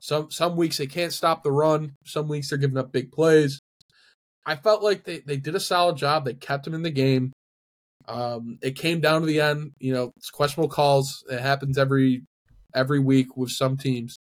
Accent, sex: American, male